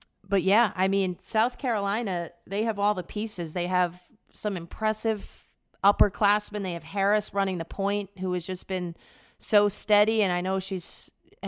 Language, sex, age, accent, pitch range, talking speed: English, female, 30-49, American, 180-210 Hz, 165 wpm